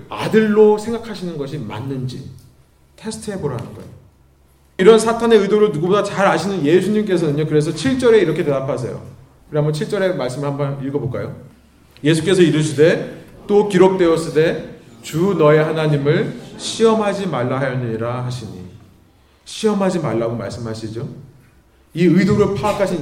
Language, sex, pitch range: Korean, male, 135-205 Hz